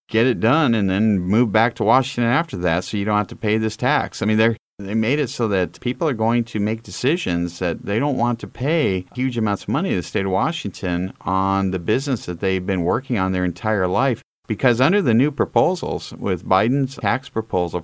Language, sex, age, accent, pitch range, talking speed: English, male, 50-69, American, 95-130 Hz, 230 wpm